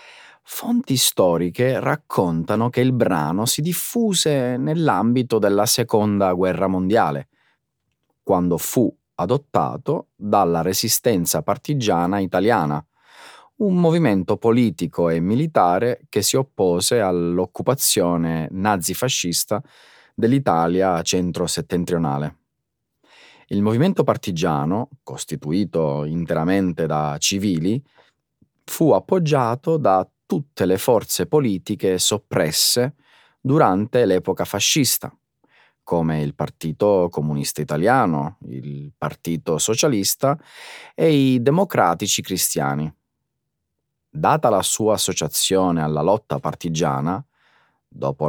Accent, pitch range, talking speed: native, 85-135 Hz, 90 wpm